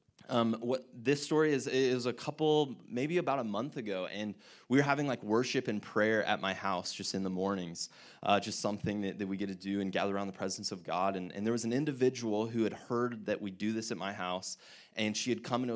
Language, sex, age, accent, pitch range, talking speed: English, male, 20-39, American, 105-125 Hz, 250 wpm